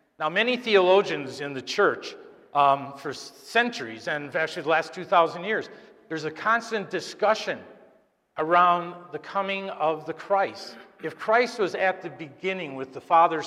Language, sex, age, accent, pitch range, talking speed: English, male, 50-69, American, 150-210 Hz, 150 wpm